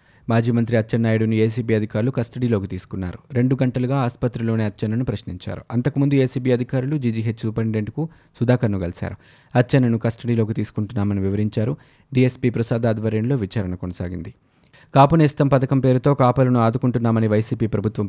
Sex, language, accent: male, Telugu, native